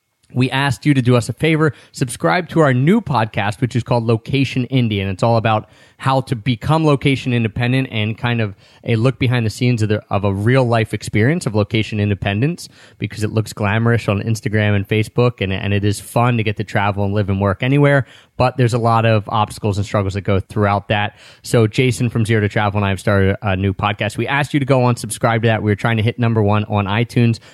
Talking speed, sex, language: 235 wpm, male, English